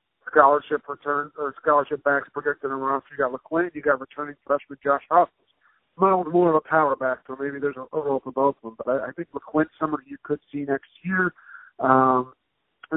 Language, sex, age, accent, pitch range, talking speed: English, male, 50-69, American, 135-160 Hz, 205 wpm